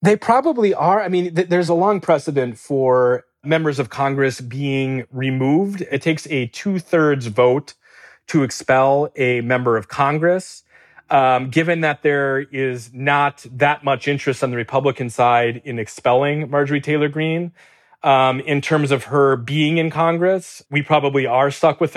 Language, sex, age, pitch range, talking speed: English, male, 30-49, 125-150 Hz, 160 wpm